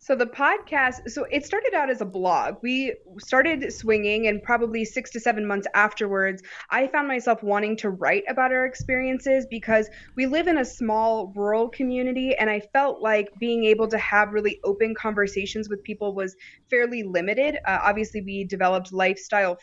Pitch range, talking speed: 195-240 Hz, 175 wpm